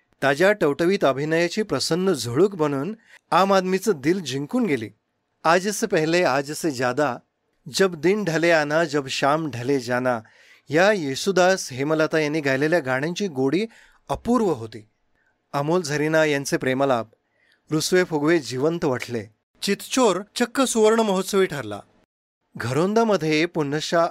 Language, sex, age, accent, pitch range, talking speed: Marathi, male, 30-49, native, 135-185 Hz, 115 wpm